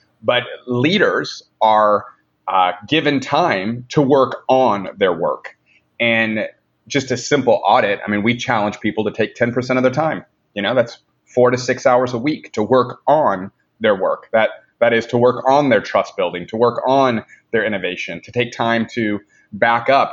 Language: English